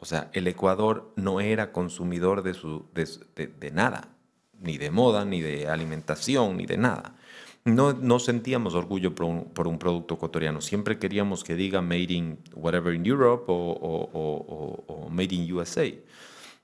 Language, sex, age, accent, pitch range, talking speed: Spanish, male, 30-49, Mexican, 90-110 Hz, 150 wpm